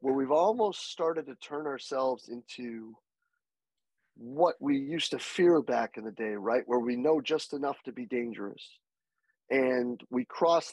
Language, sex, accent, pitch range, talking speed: English, male, American, 130-175 Hz, 160 wpm